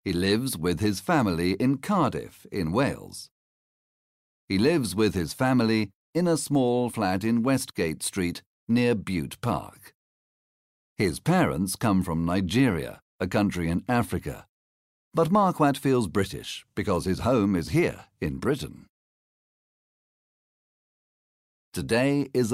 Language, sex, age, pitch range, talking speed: Slovak, male, 50-69, 90-125 Hz, 120 wpm